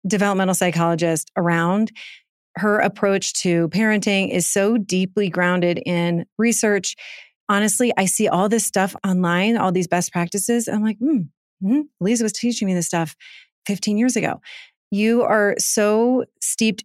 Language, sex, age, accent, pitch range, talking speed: English, female, 30-49, American, 180-210 Hz, 145 wpm